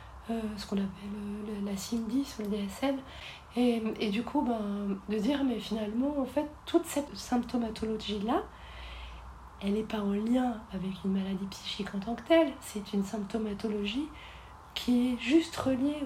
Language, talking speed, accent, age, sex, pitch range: French, 170 wpm, French, 30-49, female, 205-255 Hz